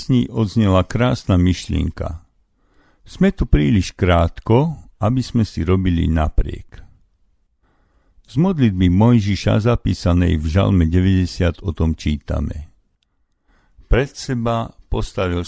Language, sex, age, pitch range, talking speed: Slovak, male, 50-69, 85-110 Hz, 100 wpm